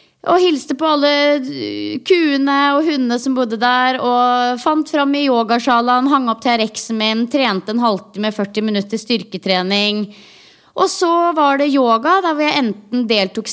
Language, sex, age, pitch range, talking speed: English, female, 20-39, 215-295 Hz, 145 wpm